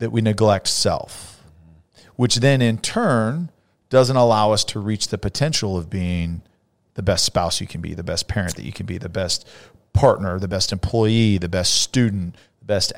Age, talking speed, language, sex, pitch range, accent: 40-59, 190 wpm, English, male, 100-125 Hz, American